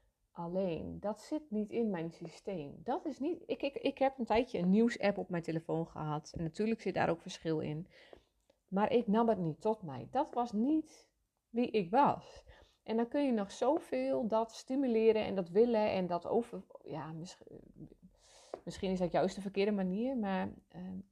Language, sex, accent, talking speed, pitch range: Dutch, female, Dutch, 190 wpm, 170-225 Hz